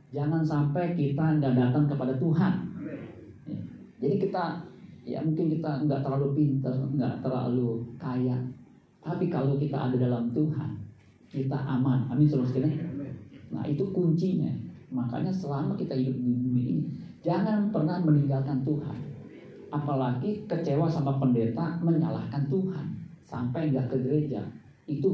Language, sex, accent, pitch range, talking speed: Indonesian, male, native, 130-185 Hz, 125 wpm